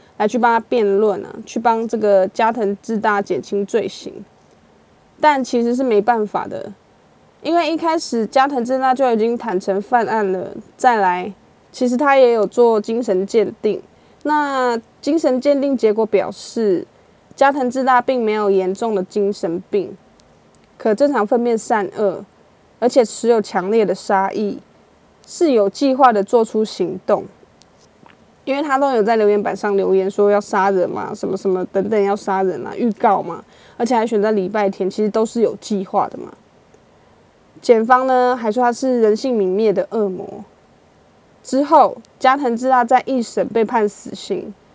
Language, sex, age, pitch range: Chinese, female, 20-39, 200-255 Hz